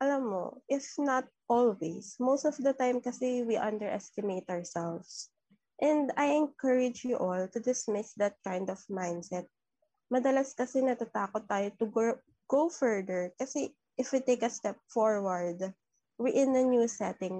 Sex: female